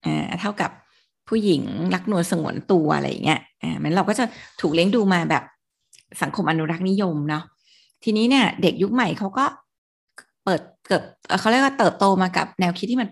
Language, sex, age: Thai, female, 20-39